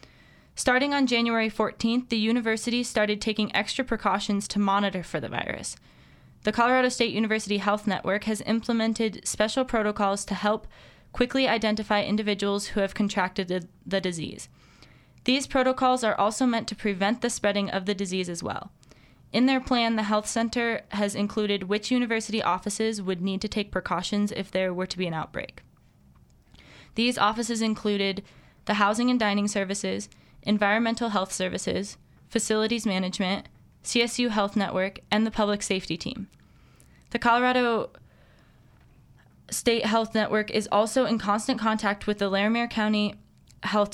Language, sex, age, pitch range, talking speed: English, female, 20-39, 195-225 Hz, 150 wpm